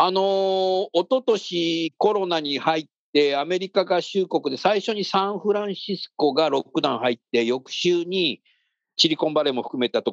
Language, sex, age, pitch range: Japanese, male, 50-69, 145-215 Hz